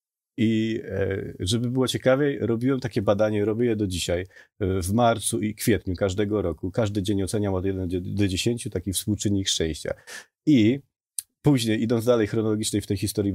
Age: 30-49